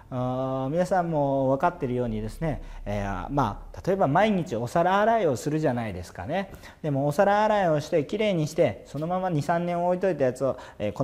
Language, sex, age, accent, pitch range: Japanese, male, 40-59, native, 115-180 Hz